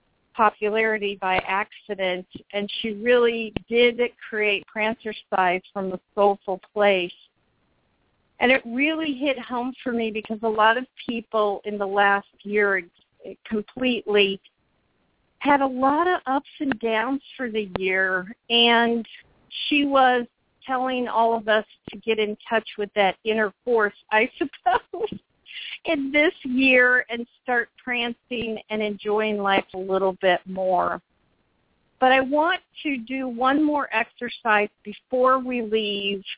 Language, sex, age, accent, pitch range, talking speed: English, female, 50-69, American, 205-250 Hz, 135 wpm